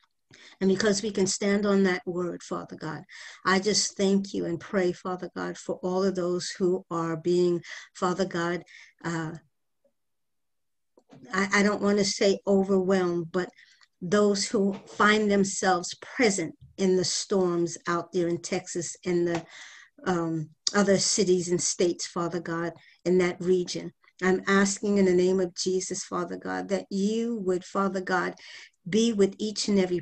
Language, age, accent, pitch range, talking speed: English, 50-69, American, 180-205 Hz, 160 wpm